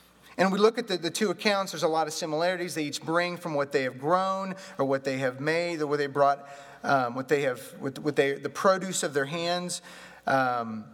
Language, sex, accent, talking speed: English, male, American, 235 wpm